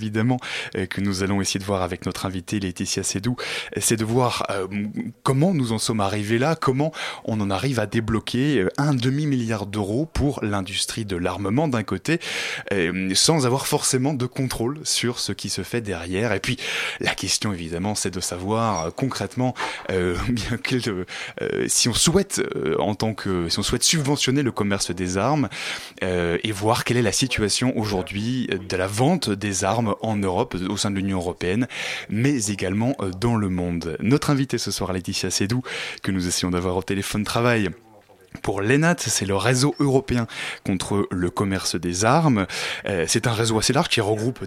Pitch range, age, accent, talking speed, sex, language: 95-125 Hz, 20-39, French, 175 wpm, male, French